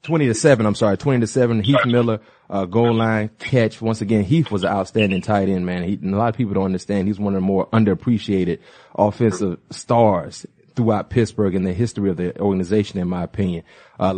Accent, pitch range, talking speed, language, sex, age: American, 105-125 Hz, 215 wpm, English, male, 30-49